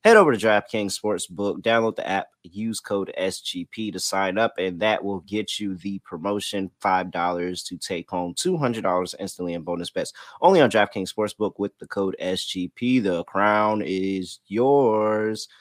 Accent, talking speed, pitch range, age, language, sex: American, 160 wpm, 95-140 Hz, 30-49, English, male